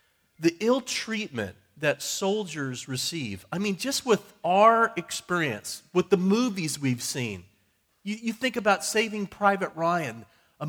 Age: 40-59